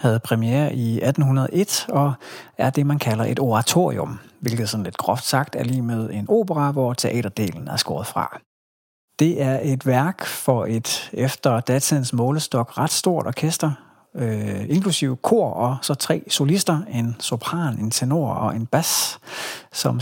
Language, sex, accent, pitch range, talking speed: Danish, male, native, 115-150 Hz, 155 wpm